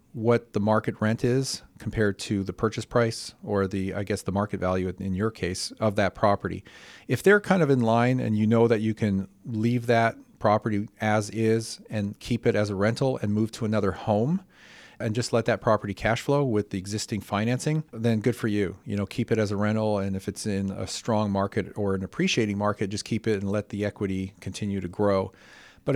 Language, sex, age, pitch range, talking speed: English, male, 40-59, 100-115 Hz, 220 wpm